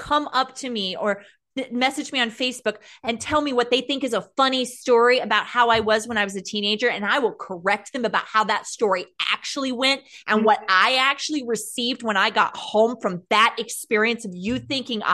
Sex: female